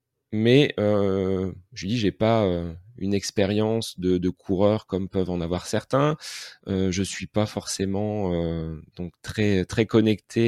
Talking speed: 155 wpm